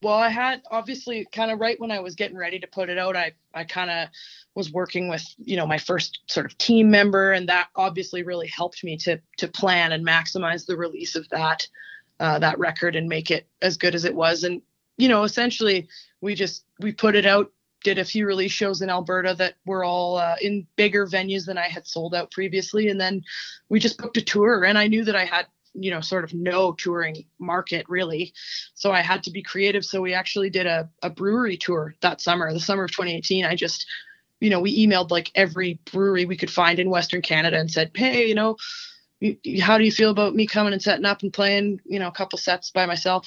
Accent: American